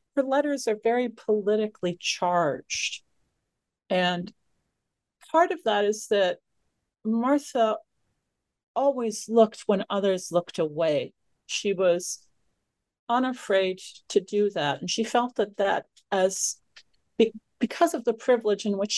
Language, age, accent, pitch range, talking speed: English, 50-69, American, 175-225 Hz, 115 wpm